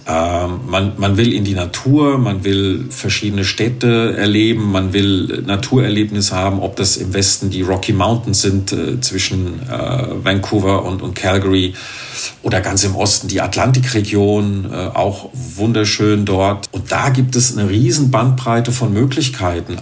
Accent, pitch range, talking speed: German, 95-120 Hz, 150 wpm